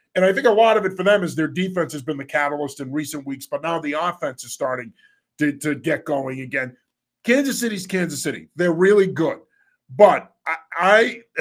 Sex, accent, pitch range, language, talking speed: male, American, 155-195 Hz, English, 205 wpm